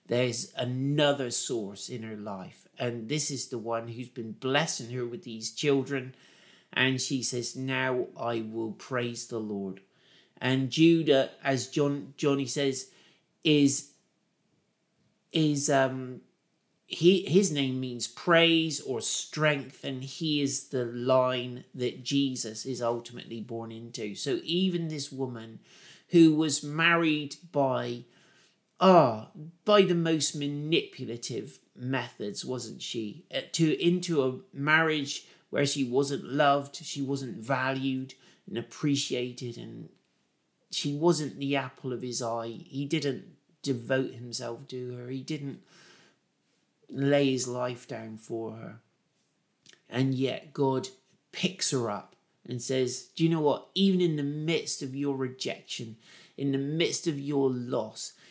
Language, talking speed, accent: English, 135 wpm, British